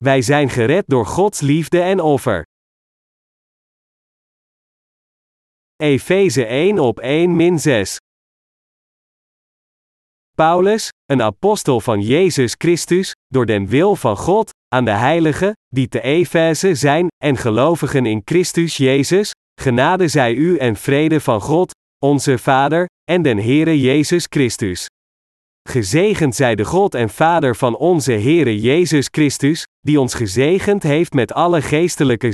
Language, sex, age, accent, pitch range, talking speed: Dutch, male, 40-59, Dutch, 130-170 Hz, 130 wpm